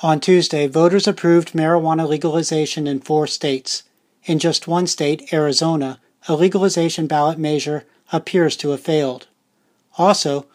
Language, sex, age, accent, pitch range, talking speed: English, male, 40-59, American, 145-175 Hz, 130 wpm